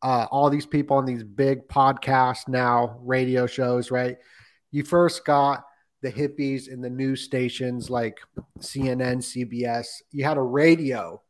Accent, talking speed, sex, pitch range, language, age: American, 150 wpm, male, 125-145 Hz, English, 30-49